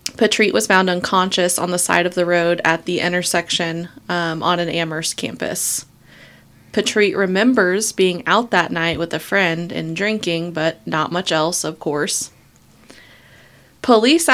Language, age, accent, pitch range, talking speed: English, 20-39, American, 170-195 Hz, 150 wpm